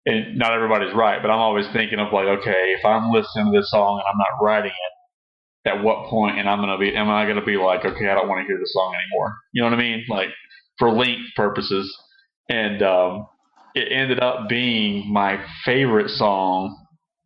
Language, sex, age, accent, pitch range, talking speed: English, male, 30-49, American, 100-115 Hz, 200 wpm